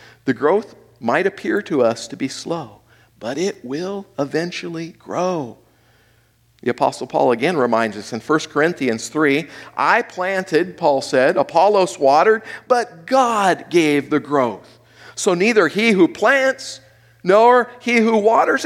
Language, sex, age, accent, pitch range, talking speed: English, male, 50-69, American, 120-180 Hz, 140 wpm